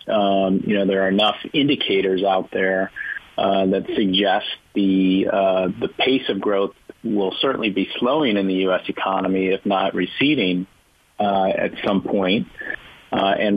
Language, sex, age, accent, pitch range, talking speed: English, male, 40-59, American, 95-105 Hz, 155 wpm